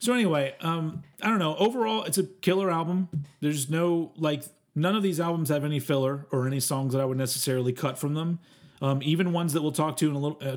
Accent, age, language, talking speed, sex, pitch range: American, 40-59, English, 235 wpm, male, 130-175 Hz